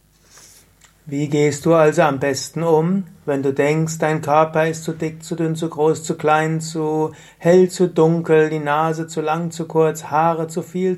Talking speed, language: 185 wpm, German